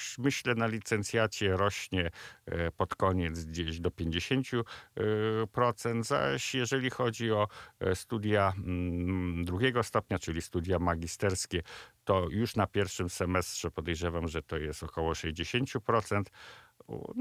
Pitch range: 90-110 Hz